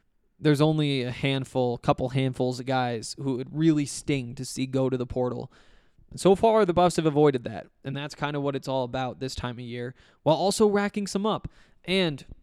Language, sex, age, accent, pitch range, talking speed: English, male, 20-39, American, 130-160 Hz, 210 wpm